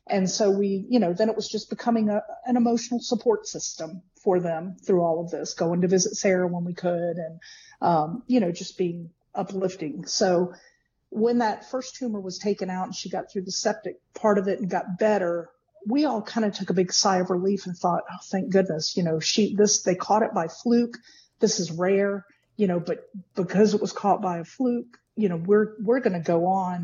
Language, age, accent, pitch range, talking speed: English, 50-69, American, 175-210 Hz, 220 wpm